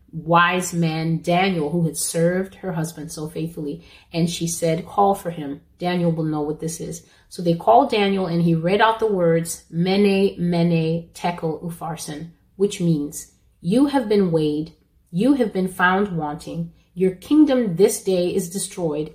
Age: 30-49